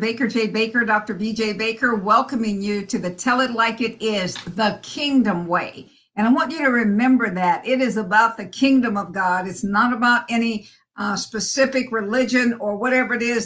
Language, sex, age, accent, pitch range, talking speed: English, female, 50-69, American, 205-245 Hz, 190 wpm